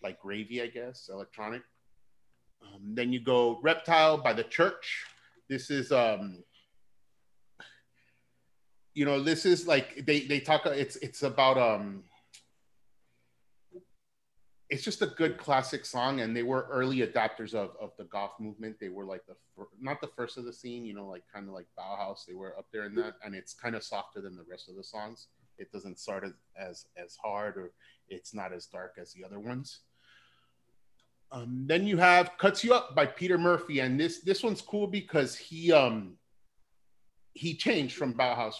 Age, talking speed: 30-49, 180 wpm